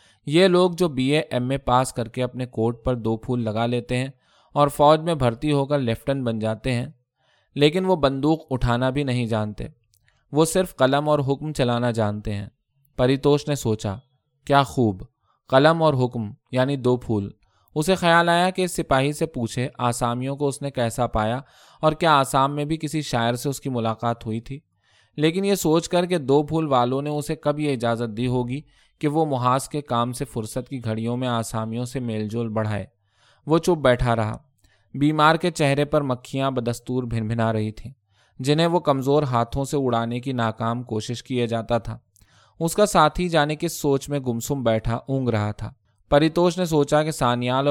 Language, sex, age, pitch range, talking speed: Urdu, male, 20-39, 115-150 Hz, 195 wpm